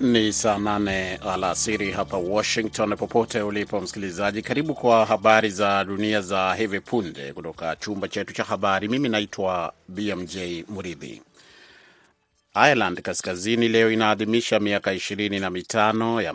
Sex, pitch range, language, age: male, 95-110 Hz, Swahili, 30-49